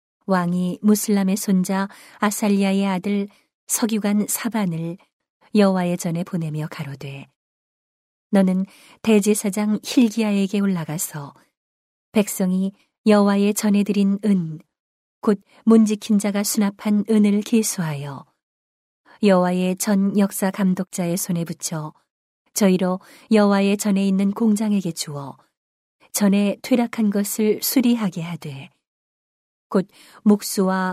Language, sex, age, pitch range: Korean, female, 40-59, 180-210 Hz